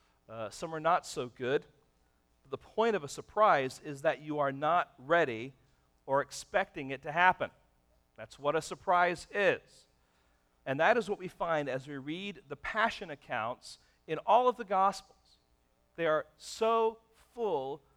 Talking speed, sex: 160 wpm, male